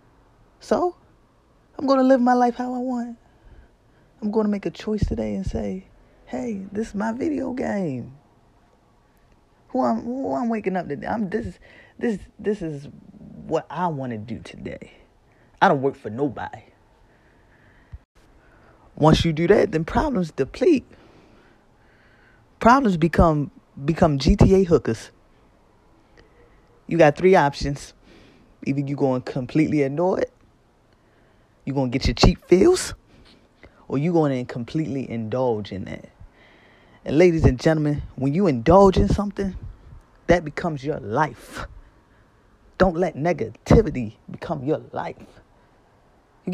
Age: 20-39